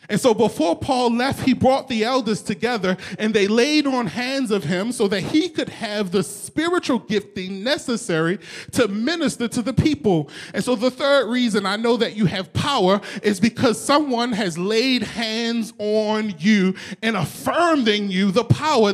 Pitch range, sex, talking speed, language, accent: 215-285 Hz, male, 175 wpm, English, American